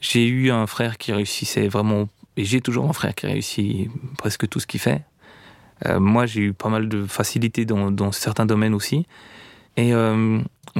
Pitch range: 105-130 Hz